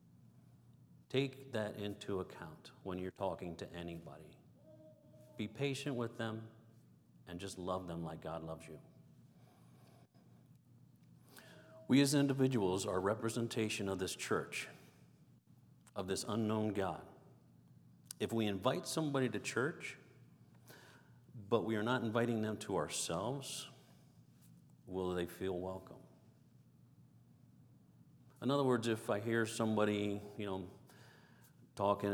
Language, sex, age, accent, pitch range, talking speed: English, male, 50-69, American, 90-120 Hz, 115 wpm